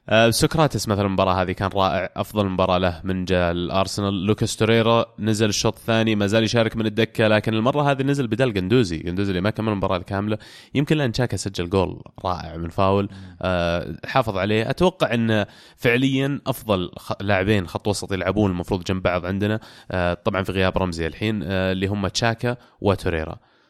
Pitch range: 95-115 Hz